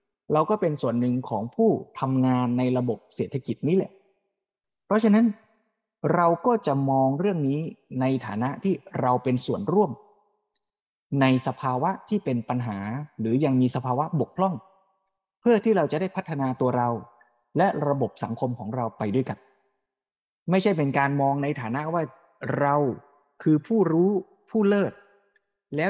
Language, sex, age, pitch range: Thai, male, 20-39, 125-190 Hz